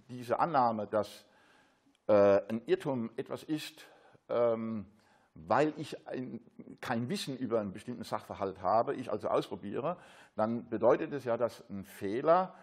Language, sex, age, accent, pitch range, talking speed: German, male, 60-79, German, 115-180 Hz, 135 wpm